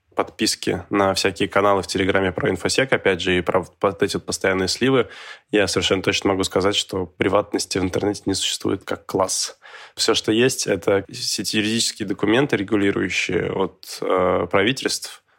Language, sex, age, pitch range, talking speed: Russian, male, 20-39, 90-100 Hz, 165 wpm